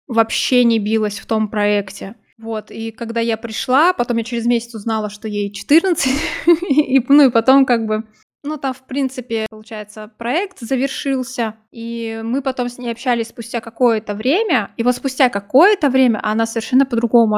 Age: 20-39